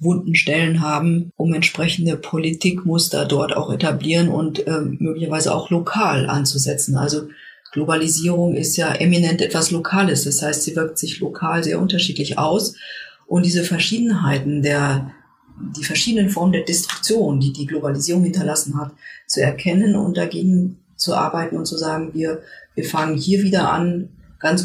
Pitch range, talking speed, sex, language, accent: 155-180 Hz, 150 wpm, female, German, German